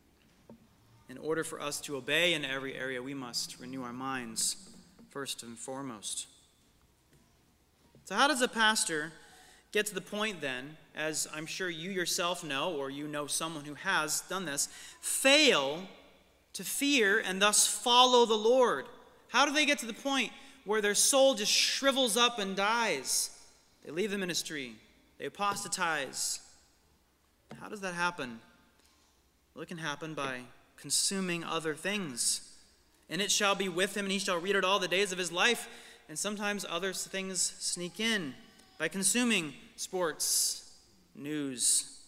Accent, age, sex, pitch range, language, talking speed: American, 30-49, male, 145-215 Hz, English, 155 wpm